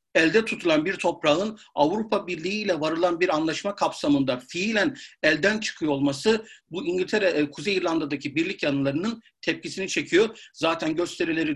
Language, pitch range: Turkish, 150-215 Hz